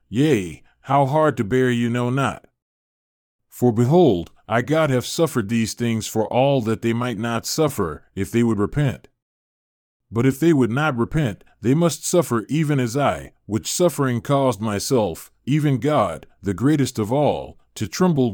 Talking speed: 165 wpm